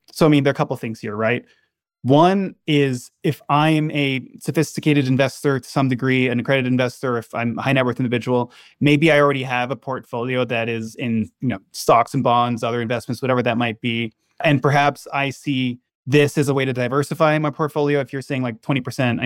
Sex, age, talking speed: male, 20-39, 210 wpm